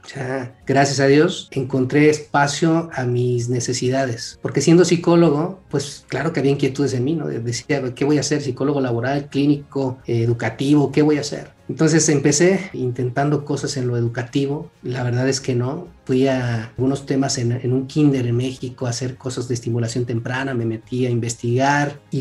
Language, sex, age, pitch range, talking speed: Spanish, male, 40-59, 125-150 Hz, 180 wpm